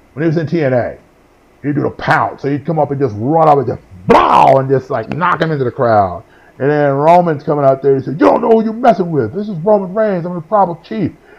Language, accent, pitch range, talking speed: English, American, 120-170 Hz, 270 wpm